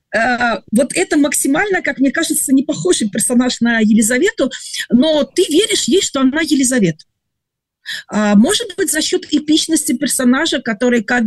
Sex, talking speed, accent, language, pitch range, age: female, 140 wpm, native, Russian, 220-290 Hz, 40-59